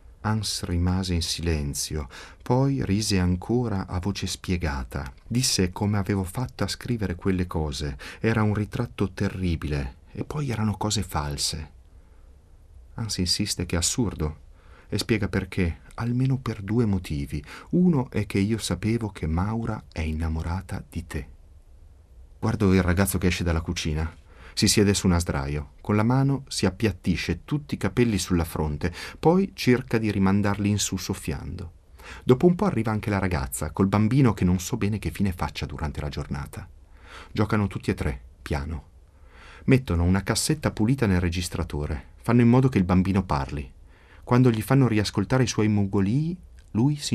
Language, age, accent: Italian, 30-49, native